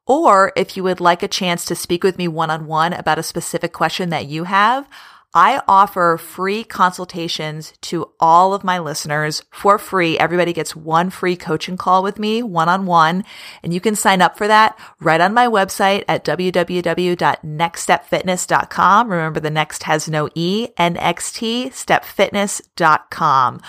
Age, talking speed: 30-49, 150 wpm